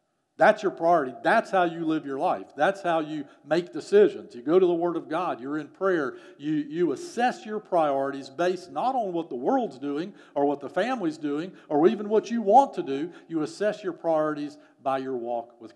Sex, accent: male, American